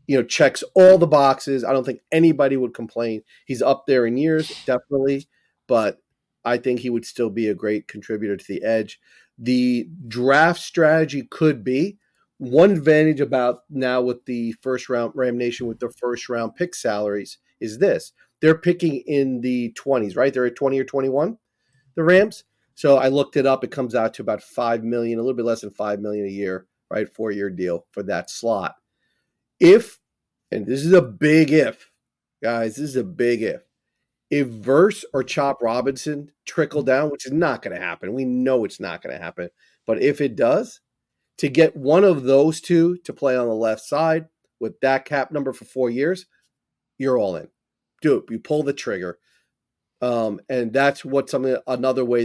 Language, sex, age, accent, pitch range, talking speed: English, male, 30-49, American, 120-145 Hz, 190 wpm